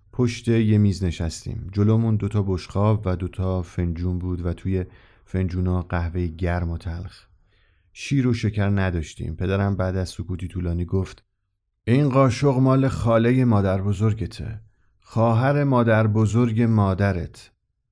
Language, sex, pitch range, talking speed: Persian, male, 90-110 Hz, 120 wpm